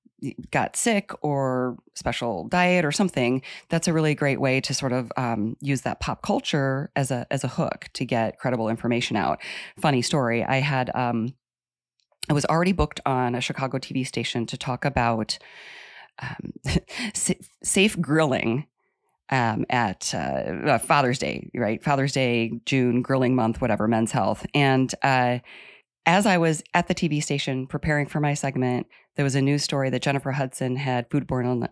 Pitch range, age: 125-155 Hz, 30-49